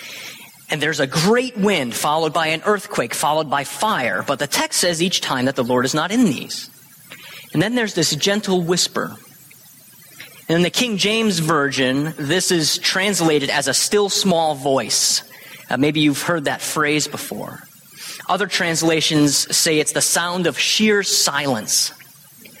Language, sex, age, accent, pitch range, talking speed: English, male, 30-49, American, 150-195 Hz, 165 wpm